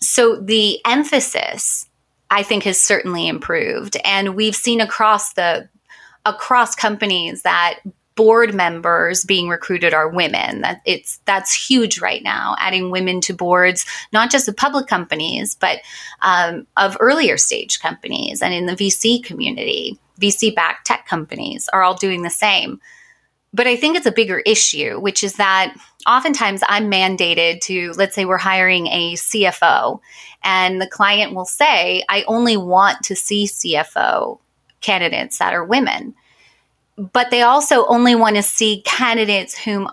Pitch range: 185-230 Hz